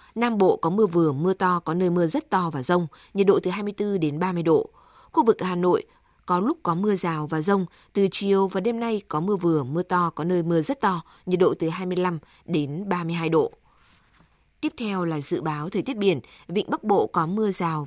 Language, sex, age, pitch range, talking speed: Vietnamese, female, 20-39, 165-200 Hz, 230 wpm